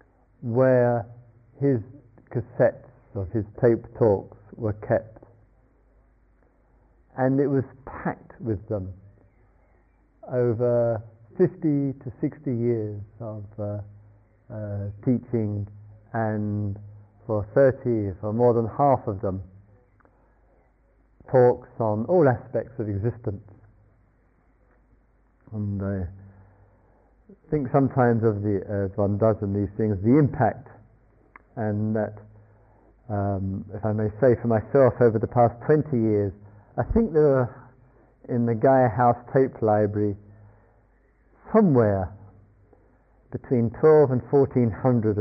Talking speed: 110 wpm